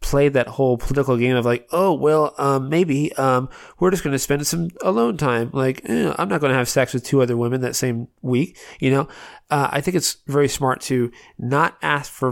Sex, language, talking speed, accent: male, English, 230 wpm, American